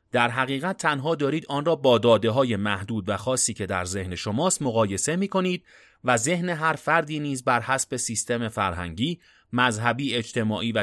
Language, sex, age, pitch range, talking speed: Persian, male, 30-49, 105-155 Hz, 160 wpm